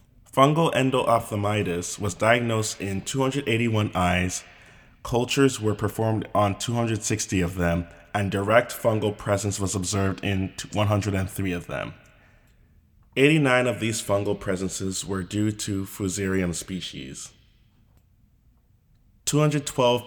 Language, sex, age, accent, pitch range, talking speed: English, male, 20-39, American, 95-110 Hz, 105 wpm